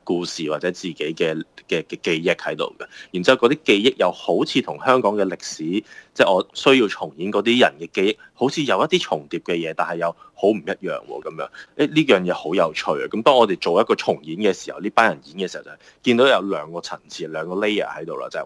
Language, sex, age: Chinese, male, 20-39